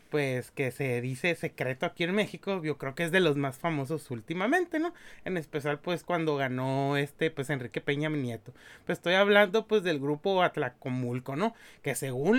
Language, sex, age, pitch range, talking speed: Spanish, male, 30-49, 150-205 Hz, 190 wpm